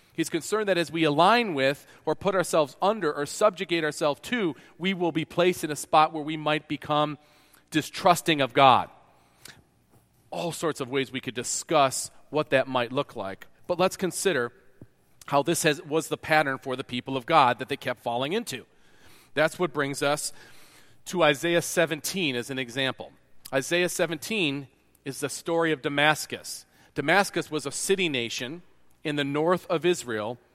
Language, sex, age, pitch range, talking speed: English, male, 40-59, 140-180 Hz, 170 wpm